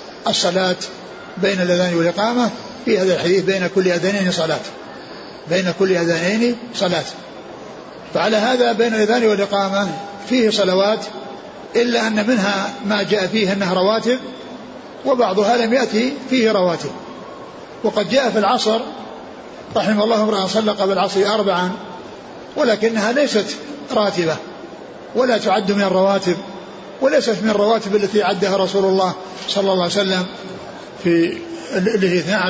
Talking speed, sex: 120 wpm, male